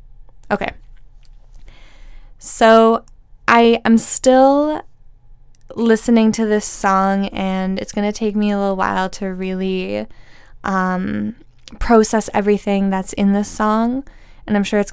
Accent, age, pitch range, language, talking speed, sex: American, 10-29, 195-220 Hz, English, 125 wpm, female